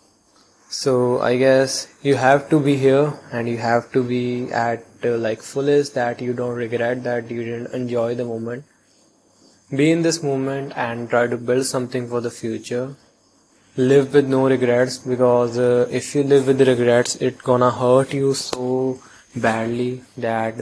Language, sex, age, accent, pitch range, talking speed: English, male, 20-39, Indian, 120-135 Hz, 165 wpm